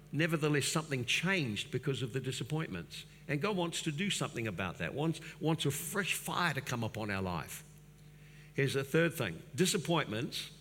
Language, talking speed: English, 170 wpm